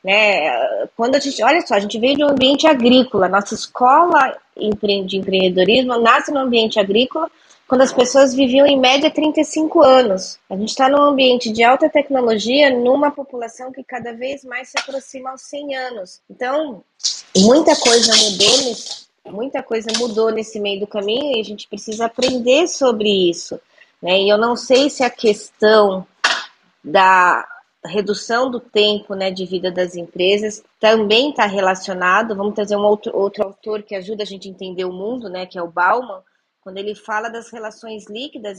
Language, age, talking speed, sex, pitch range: Portuguese, 20-39, 165 wpm, female, 200-255 Hz